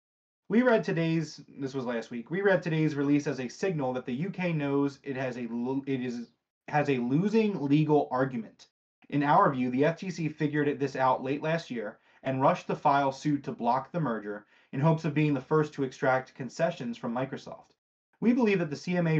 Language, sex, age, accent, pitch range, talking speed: English, male, 30-49, American, 130-160 Hz, 190 wpm